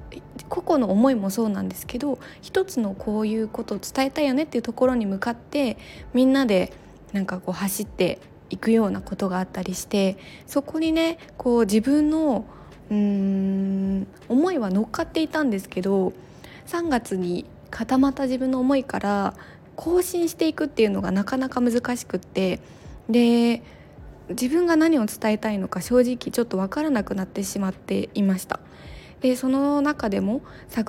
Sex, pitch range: female, 195-265 Hz